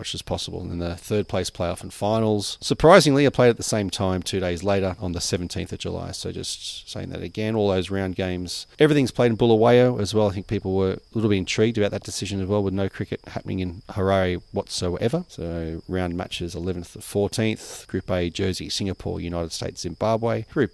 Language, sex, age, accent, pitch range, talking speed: English, male, 40-59, Australian, 95-115 Hz, 215 wpm